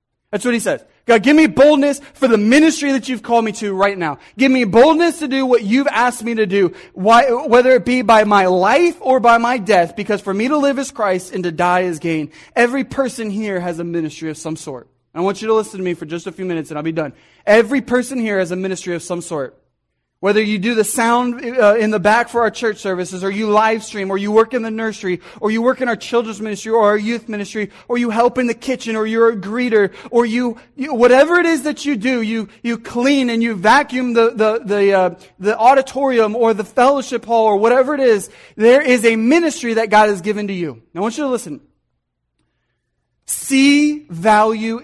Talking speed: 235 wpm